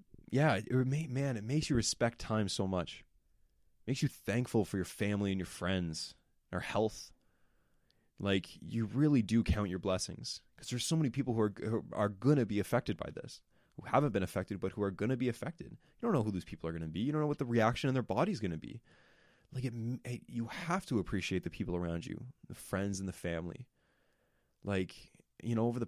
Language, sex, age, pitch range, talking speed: English, male, 20-39, 90-115 Hz, 230 wpm